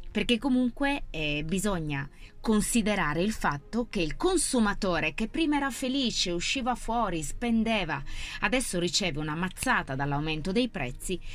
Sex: female